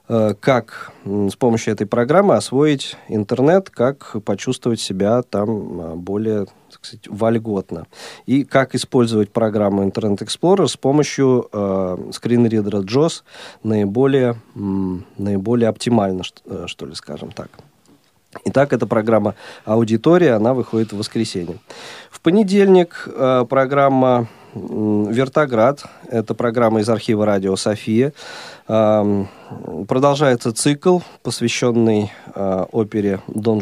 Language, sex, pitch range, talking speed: Russian, male, 105-135 Hz, 105 wpm